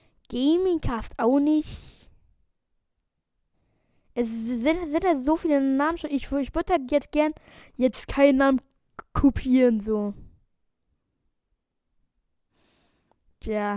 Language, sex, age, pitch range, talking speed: German, female, 20-39, 230-315 Hz, 105 wpm